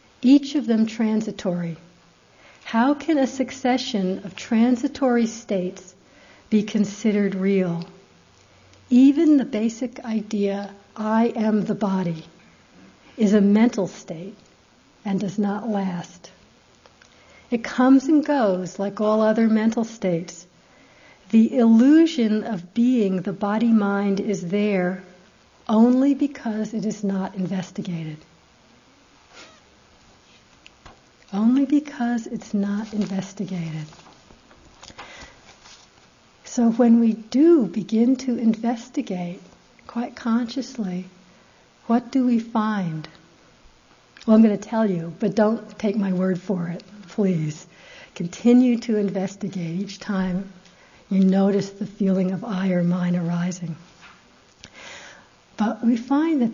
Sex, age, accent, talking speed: female, 60-79, American, 110 wpm